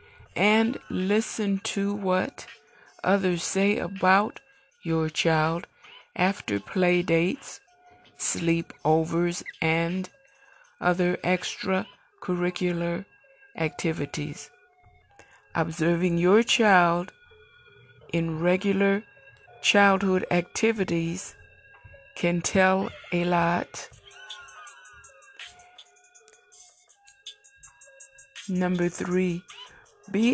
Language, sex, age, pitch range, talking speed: English, female, 60-79, 175-230 Hz, 60 wpm